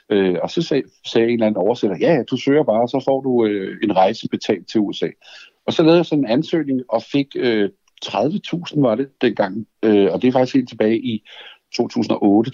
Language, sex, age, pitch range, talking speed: Danish, male, 60-79, 105-145 Hz, 200 wpm